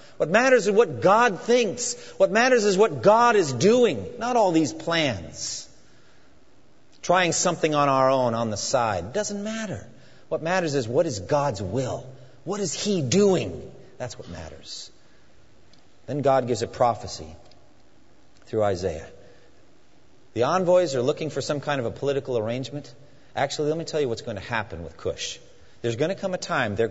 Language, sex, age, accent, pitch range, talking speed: English, male, 40-59, American, 120-180 Hz, 175 wpm